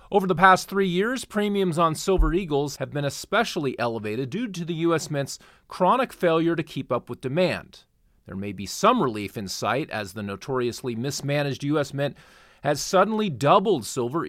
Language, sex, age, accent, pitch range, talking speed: English, male, 30-49, American, 125-180 Hz, 175 wpm